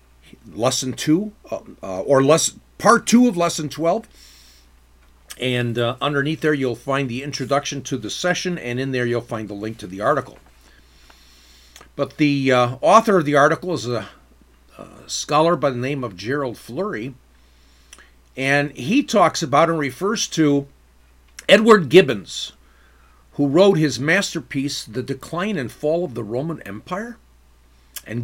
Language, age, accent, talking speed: English, 50-69, American, 145 wpm